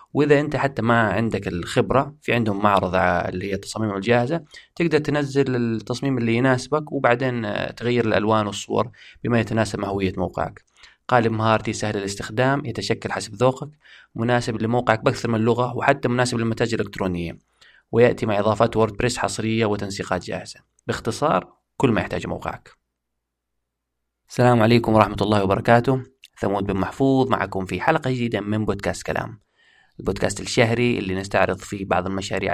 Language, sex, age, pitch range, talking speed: Arabic, male, 30-49, 95-115 Hz, 140 wpm